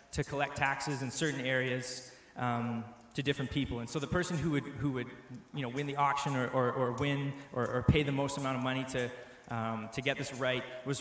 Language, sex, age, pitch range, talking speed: English, male, 20-39, 125-145 Hz, 230 wpm